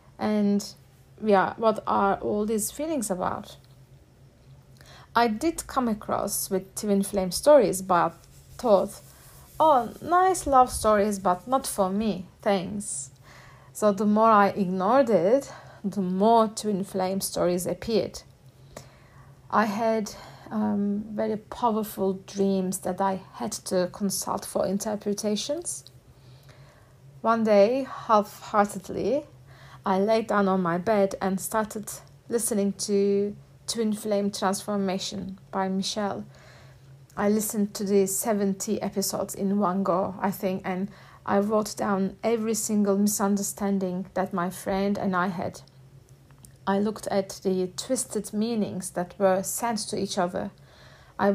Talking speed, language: 125 wpm, English